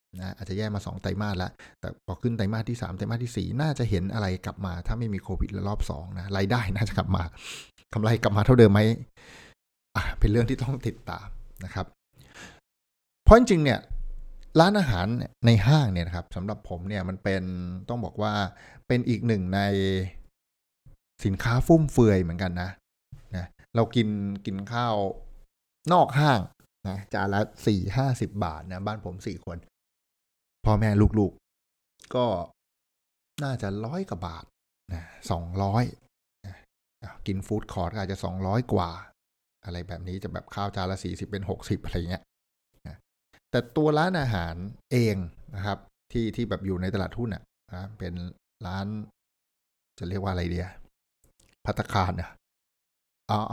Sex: male